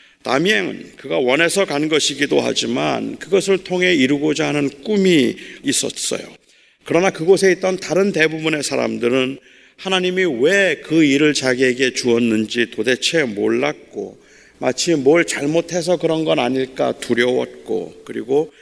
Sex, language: male, Korean